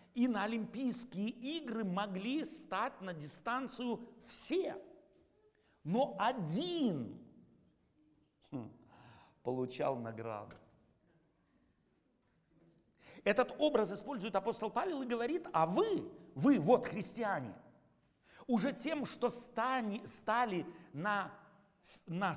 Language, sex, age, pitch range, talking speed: Russian, male, 50-69, 165-245 Hz, 85 wpm